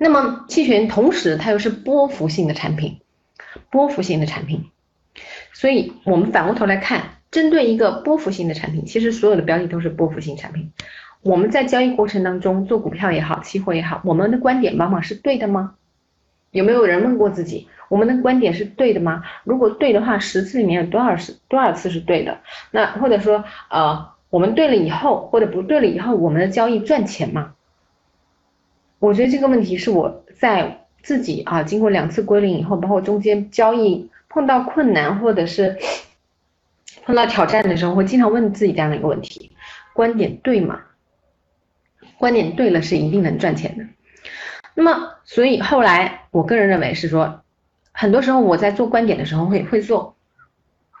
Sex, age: female, 30-49